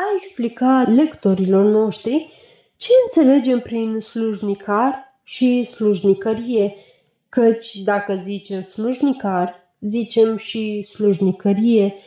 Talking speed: 85 wpm